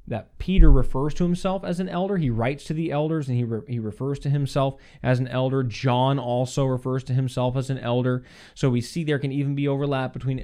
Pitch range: 115-145 Hz